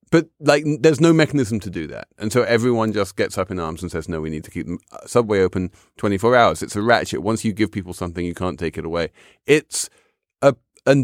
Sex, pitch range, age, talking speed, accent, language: male, 85-115 Hz, 30-49, 235 wpm, British, English